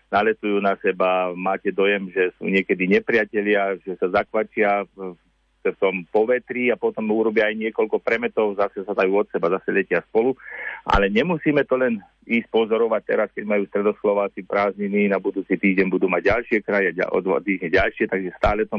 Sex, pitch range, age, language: male, 95-115 Hz, 40-59, Slovak